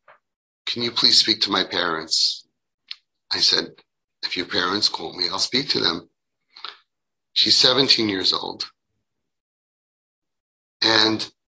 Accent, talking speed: American, 120 wpm